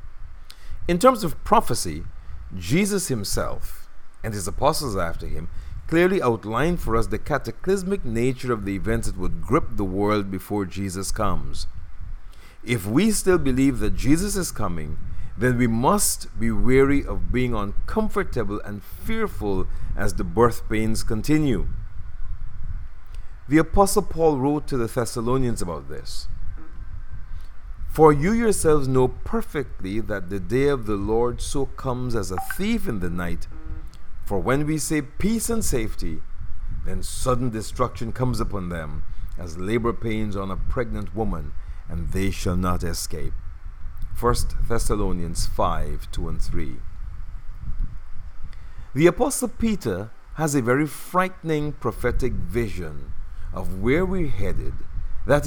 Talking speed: 135 wpm